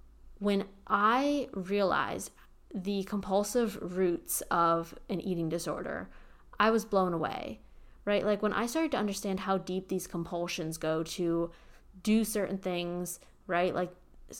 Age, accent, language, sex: 20-39, American, English, female